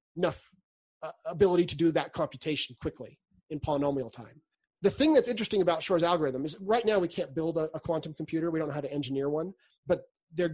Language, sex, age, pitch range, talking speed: English, male, 30-49, 145-180 Hz, 210 wpm